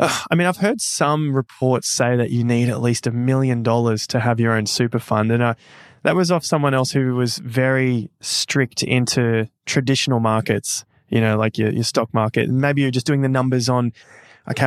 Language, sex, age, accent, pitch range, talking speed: English, male, 20-39, Australian, 115-140 Hz, 205 wpm